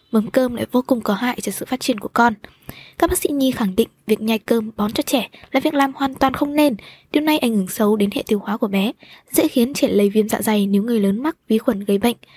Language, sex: Vietnamese, female